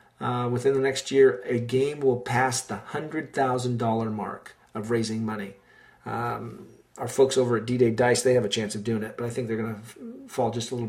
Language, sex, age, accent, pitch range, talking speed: English, male, 40-59, American, 120-160 Hz, 215 wpm